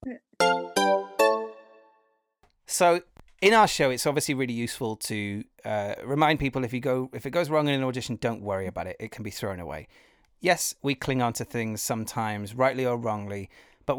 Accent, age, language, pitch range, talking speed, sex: British, 30-49, English, 110-150 Hz, 180 wpm, male